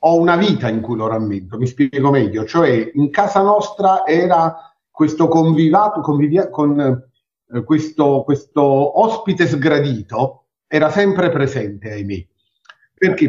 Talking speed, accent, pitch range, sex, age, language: 135 wpm, native, 120-160 Hz, male, 50-69, Italian